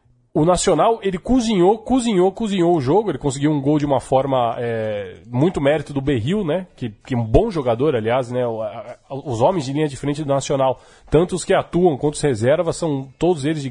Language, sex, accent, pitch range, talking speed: Portuguese, male, Brazilian, 135-180 Hz, 215 wpm